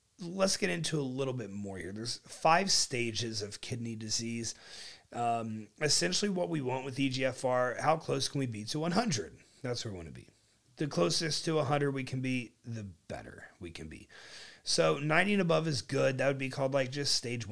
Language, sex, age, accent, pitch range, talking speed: English, male, 30-49, American, 115-150 Hz, 200 wpm